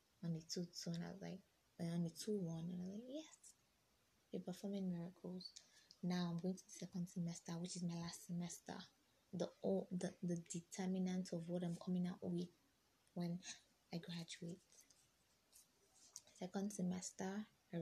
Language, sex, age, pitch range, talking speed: English, female, 20-39, 175-205 Hz, 160 wpm